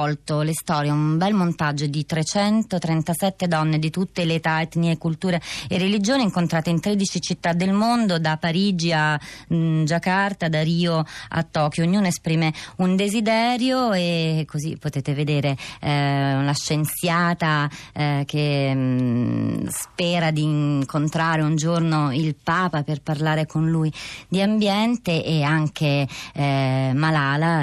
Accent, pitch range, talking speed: native, 145-180 Hz, 130 wpm